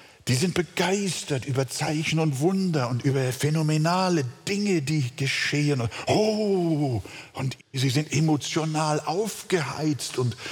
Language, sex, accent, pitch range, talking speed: German, male, German, 130-180 Hz, 115 wpm